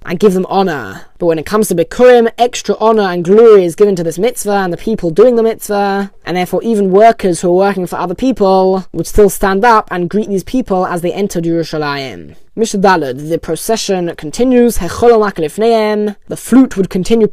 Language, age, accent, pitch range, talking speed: English, 10-29, British, 180-225 Hz, 195 wpm